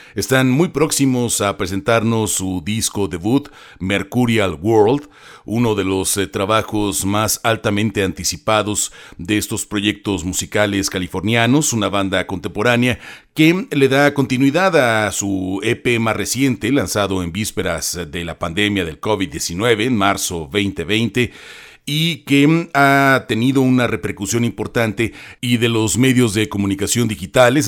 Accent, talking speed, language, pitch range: Mexican, 130 wpm, Spanish, 100-125 Hz